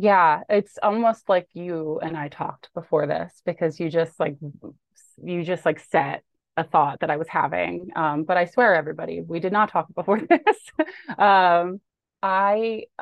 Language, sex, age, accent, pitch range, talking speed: English, female, 30-49, American, 155-190 Hz, 170 wpm